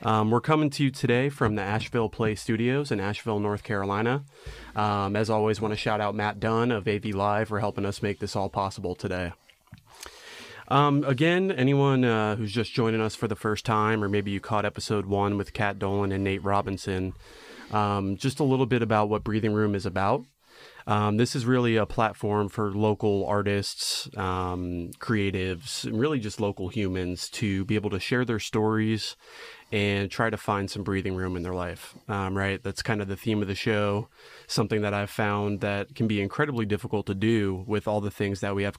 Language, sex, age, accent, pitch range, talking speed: English, male, 30-49, American, 100-110 Hz, 205 wpm